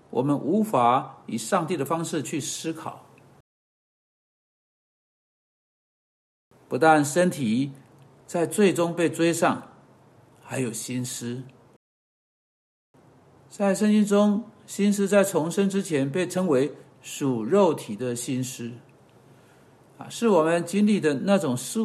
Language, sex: Chinese, male